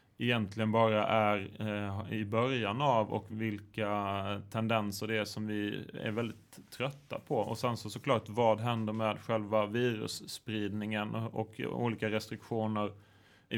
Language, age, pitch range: English, 20-39, 105-120 Hz